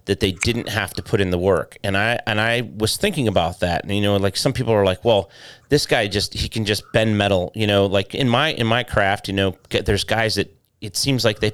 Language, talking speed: English, 265 wpm